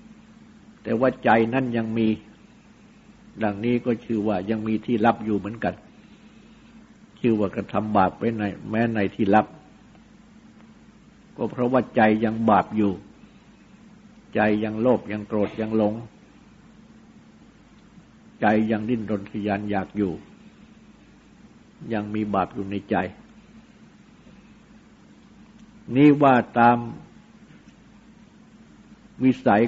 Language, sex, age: Thai, male, 60-79